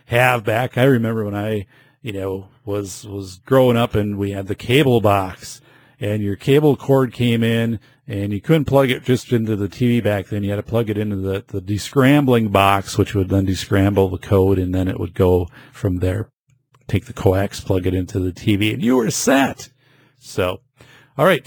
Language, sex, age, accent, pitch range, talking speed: English, male, 50-69, American, 100-130 Hz, 205 wpm